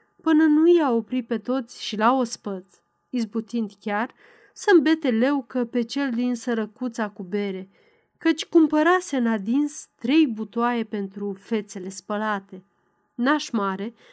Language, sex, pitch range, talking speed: Romanian, female, 205-290 Hz, 135 wpm